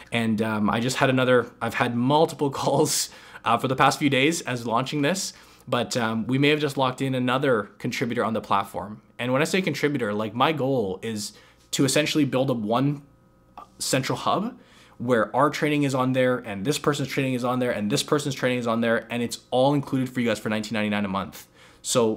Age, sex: 20-39, male